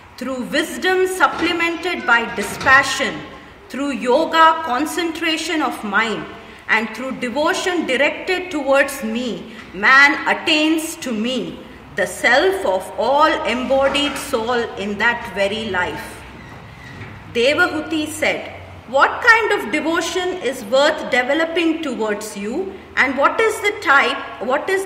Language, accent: English, Indian